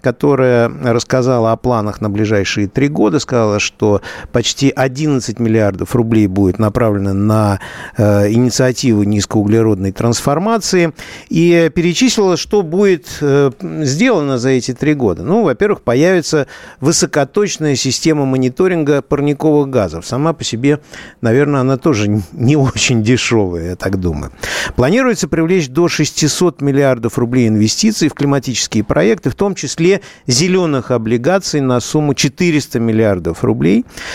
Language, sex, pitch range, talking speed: Russian, male, 115-150 Hz, 125 wpm